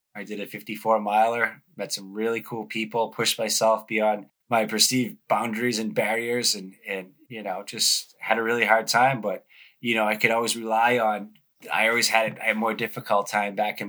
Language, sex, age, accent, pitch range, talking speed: English, male, 20-39, American, 100-110 Hz, 200 wpm